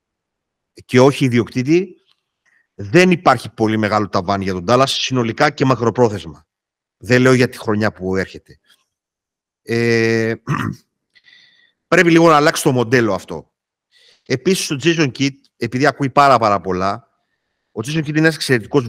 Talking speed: 140 wpm